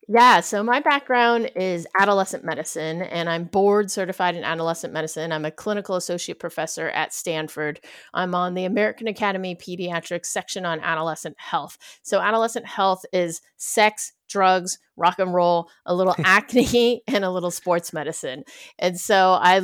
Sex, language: female, English